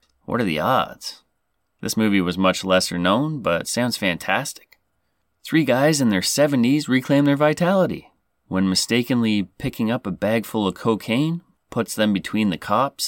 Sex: male